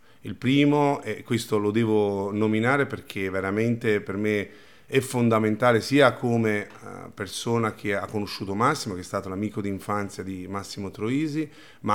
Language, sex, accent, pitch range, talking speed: Italian, male, native, 95-110 Hz, 150 wpm